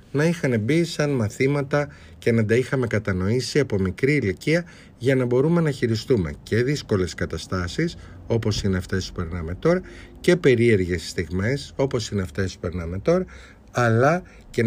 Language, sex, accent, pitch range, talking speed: Greek, male, native, 95-145 Hz, 155 wpm